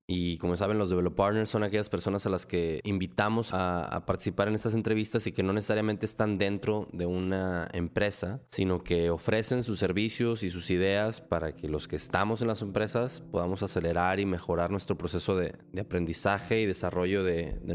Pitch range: 90-110 Hz